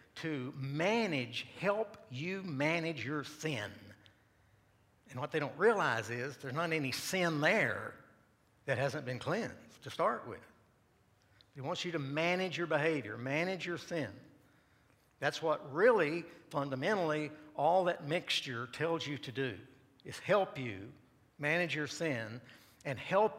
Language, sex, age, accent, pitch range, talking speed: English, male, 60-79, American, 120-160 Hz, 140 wpm